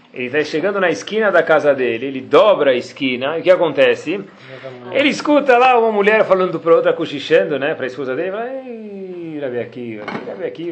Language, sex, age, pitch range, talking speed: Portuguese, male, 40-59, 150-235 Hz, 190 wpm